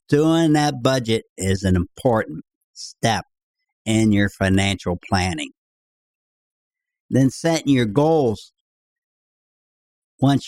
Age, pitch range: 60-79, 110-150 Hz